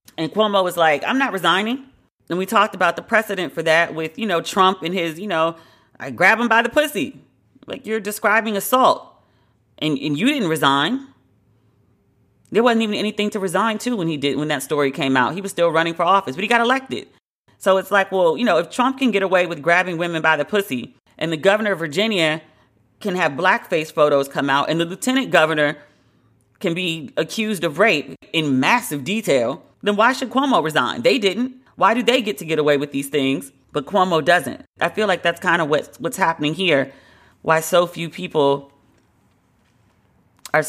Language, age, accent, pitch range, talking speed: English, 40-59, American, 145-200 Hz, 205 wpm